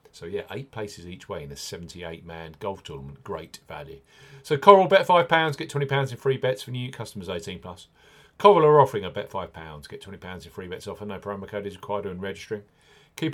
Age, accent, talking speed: 40-59, British, 235 wpm